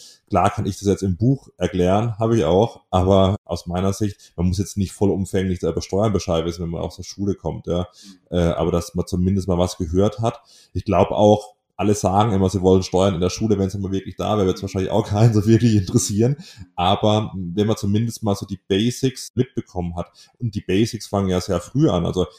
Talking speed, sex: 225 wpm, male